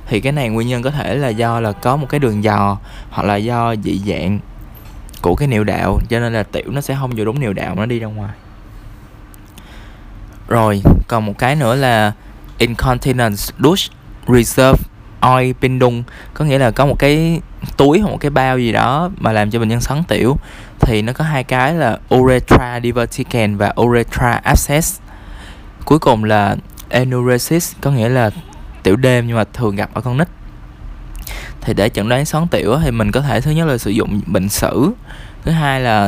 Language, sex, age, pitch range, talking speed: Vietnamese, male, 20-39, 105-130 Hz, 195 wpm